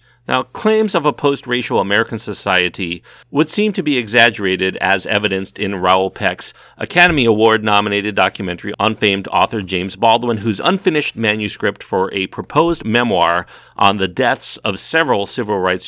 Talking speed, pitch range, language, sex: 145 wpm, 95-125 Hz, English, male